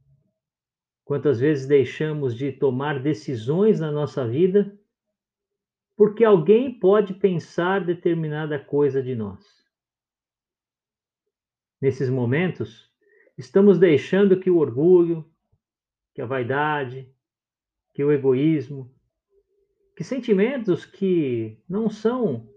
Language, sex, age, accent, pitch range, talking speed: Portuguese, male, 50-69, Brazilian, 135-210 Hz, 95 wpm